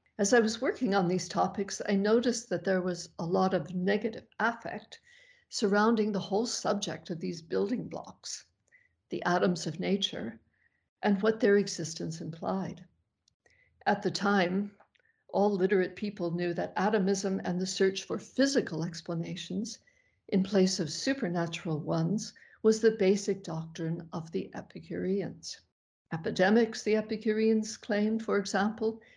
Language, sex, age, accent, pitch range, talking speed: English, female, 60-79, American, 175-215 Hz, 140 wpm